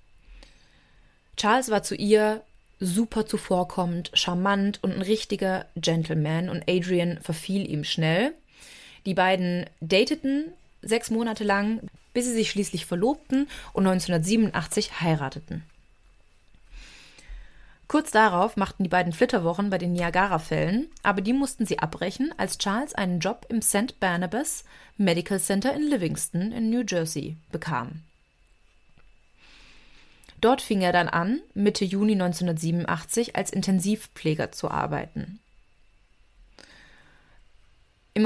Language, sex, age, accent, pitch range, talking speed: German, female, 20-39, German, 165-215 Hz, 115 wpm